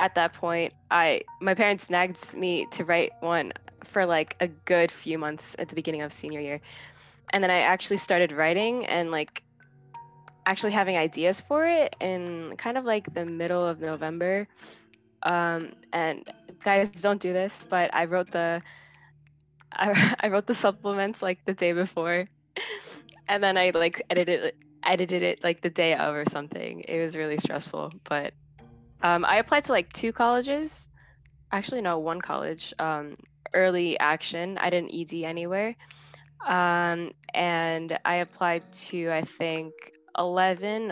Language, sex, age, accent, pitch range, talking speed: English, female, 10-29, American, 165-205 Hz, 155 wpm